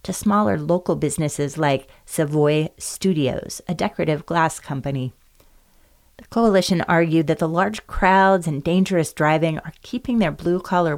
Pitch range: 145-180 Hz